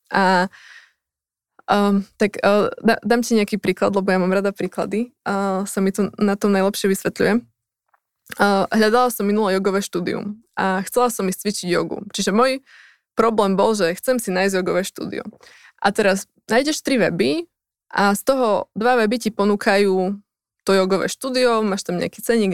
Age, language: 20-39, Slovak